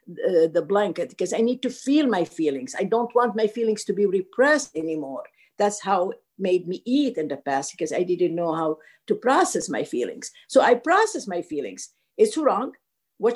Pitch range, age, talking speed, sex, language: 190-300 Hz, 50-69, 200 wpm, female, English